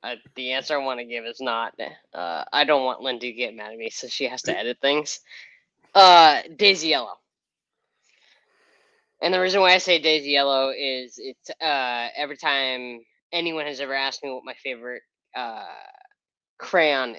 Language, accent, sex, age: English, American, female, 10-29